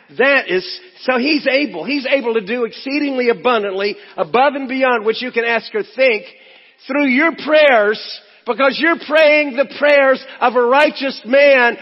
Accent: American